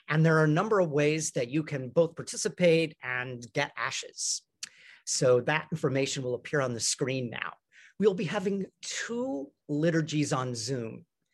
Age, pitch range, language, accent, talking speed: 40-59, 140-185 Hz, English, American, 165 wpm